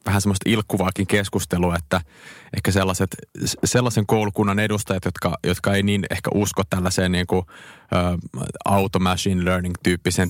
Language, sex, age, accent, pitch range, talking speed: Finnish, male, 20-39, native, 90-100 Hz, 120 wpm